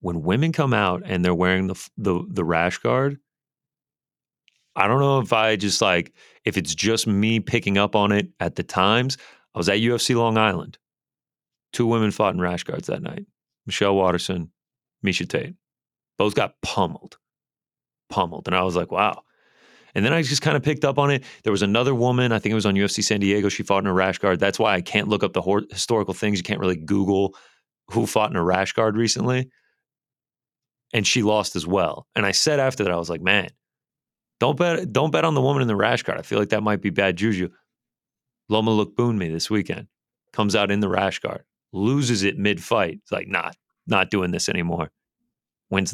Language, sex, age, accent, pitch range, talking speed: English, male, 30-49, American, 95-125 Hz, 215 wpm